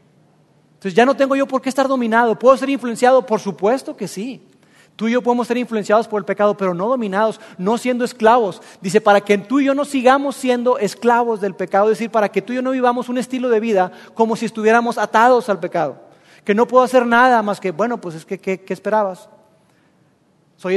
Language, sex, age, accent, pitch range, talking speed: Spanish, male, 40-59, Mexican, 170-230 Hz, 220 wpm